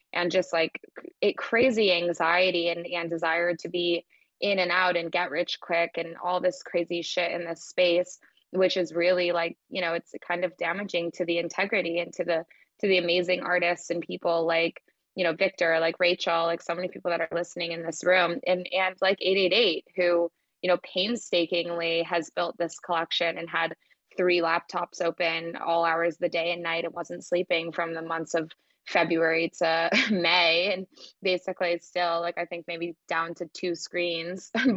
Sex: female